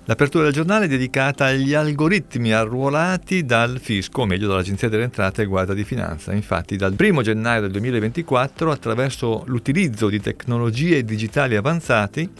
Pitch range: 105-140 Hz